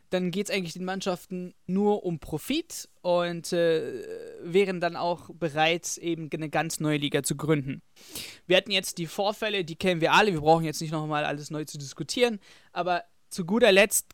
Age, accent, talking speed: 20-39, German, 185 wpm